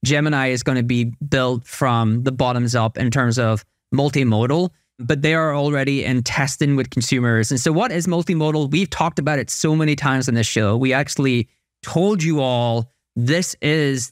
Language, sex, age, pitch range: English, male, 20-39, 125-155 Hz